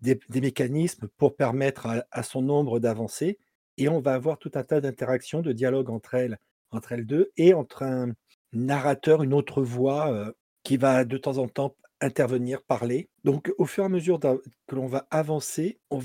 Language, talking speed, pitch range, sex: French, 195 wpm, 125-150 Hz, male